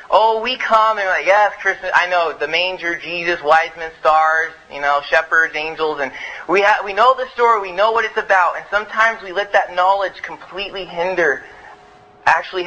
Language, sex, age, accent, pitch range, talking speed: English, male, 20-39, American, 160-195 Hz, 195 wpm